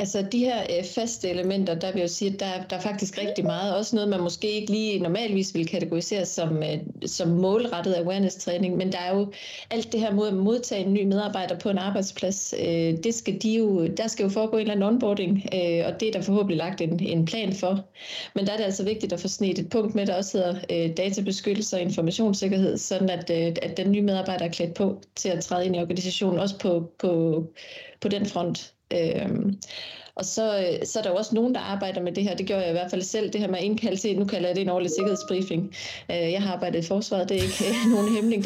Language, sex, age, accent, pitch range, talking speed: Danish, female, 30-49, native, 180-210 Hz, 245 wpm